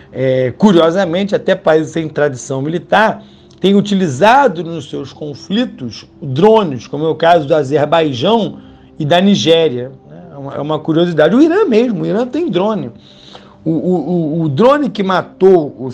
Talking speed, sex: 155 wpm, male